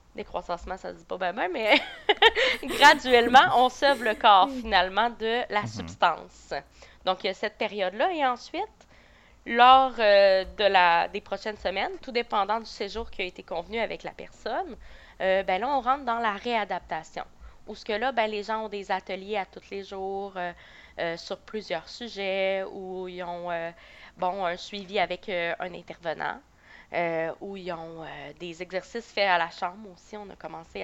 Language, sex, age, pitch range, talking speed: French, female, 20-39, 180-220 Hz, 185 wpm